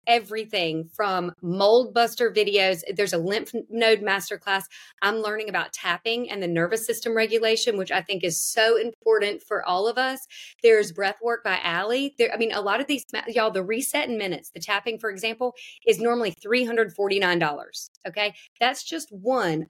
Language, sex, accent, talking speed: English, female, American, 170 wpm